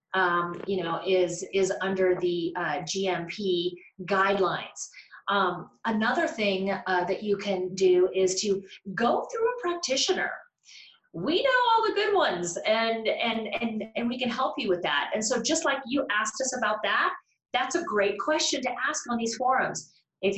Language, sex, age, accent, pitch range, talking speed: English, female, 30-49, American, 190-230 Hz, 175 wpm